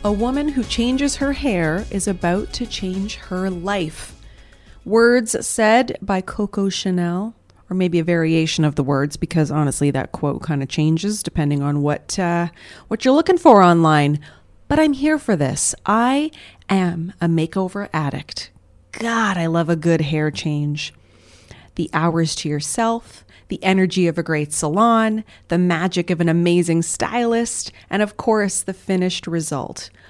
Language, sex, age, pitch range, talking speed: English, female, 30-49, 160-230 Hz, 155 wpm